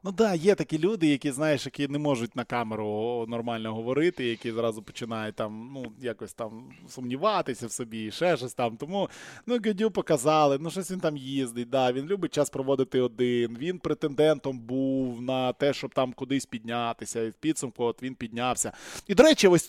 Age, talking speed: 20-39, 190 wpm